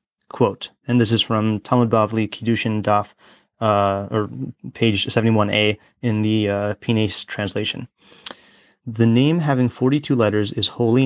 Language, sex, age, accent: English, male, 30-49, American